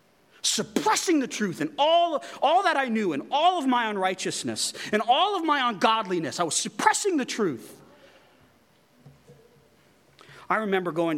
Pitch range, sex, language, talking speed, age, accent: 155-245 Hz, male, English, 145 wpm, 30-49, American